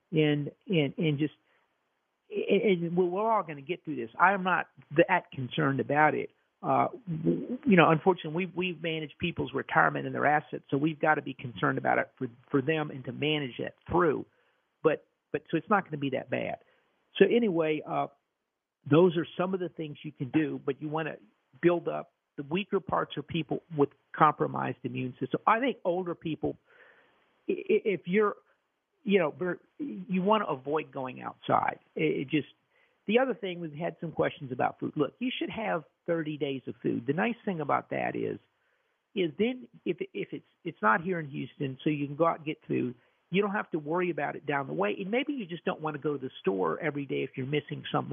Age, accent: 50-69, American